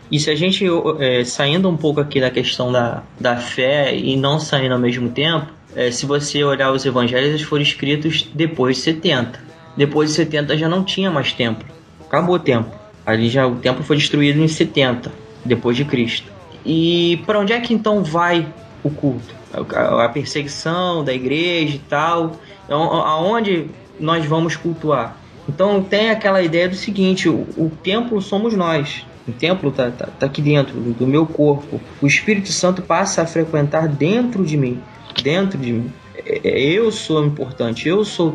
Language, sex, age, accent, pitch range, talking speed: Portuguese, male, 20-39, Brazilian, 130-170 Hz, 170 wpm